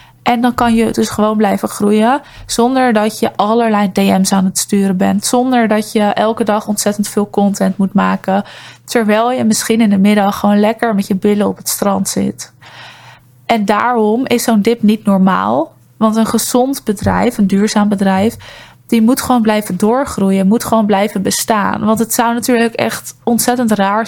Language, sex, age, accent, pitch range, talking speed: Dutch, female, 20-39, Dutch, 200-230 Hz, 180 wpm